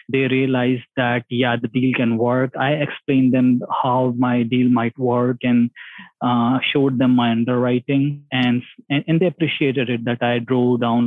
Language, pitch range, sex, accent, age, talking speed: English, 120-130 Hz, male, Indian, 20-39, 170 wpm